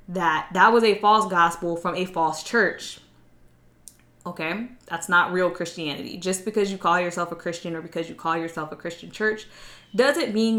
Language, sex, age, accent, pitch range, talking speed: English, female, 10-29, American, 165-205 Hz, 180 wpm